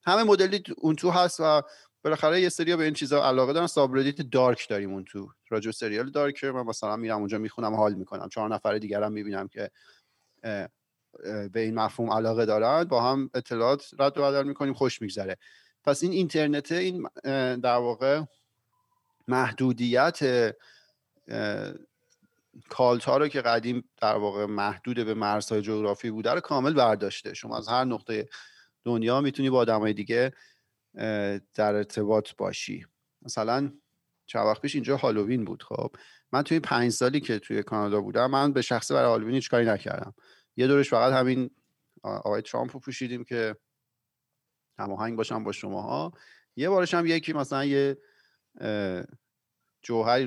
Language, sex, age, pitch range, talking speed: Persian, male, 40-59, 110-140 Hz, 145 wpm